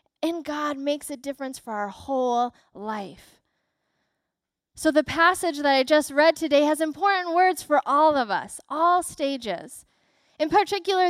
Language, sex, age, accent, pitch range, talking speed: English, female, 10-29, American, 265-345 Hz, 150 wpm